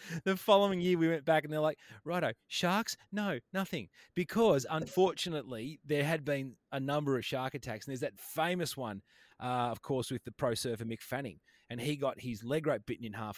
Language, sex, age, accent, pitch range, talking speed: English, male, 30-49, Australian, 110-155 Hz, 205 wpm